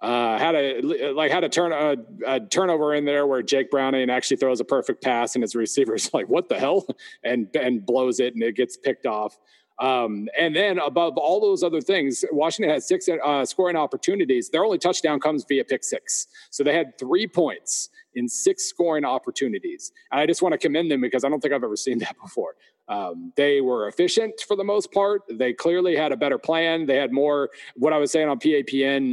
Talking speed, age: 215 wpm, 40-59